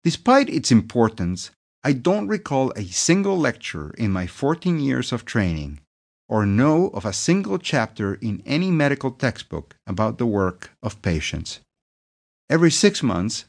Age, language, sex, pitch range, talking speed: 50-69, English, male, 100-145 Hz, 145 wpm